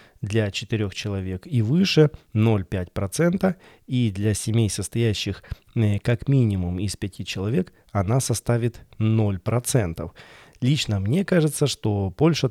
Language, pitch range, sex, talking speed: Russian, 100-130 Hz, male, 110 wpm